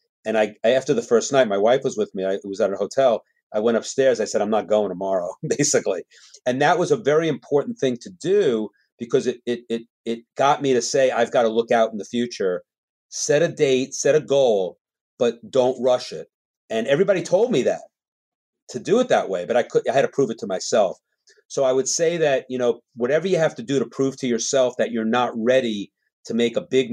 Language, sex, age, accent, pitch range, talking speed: English, male, 40-59, American, 115-195 Hz, 240 wpm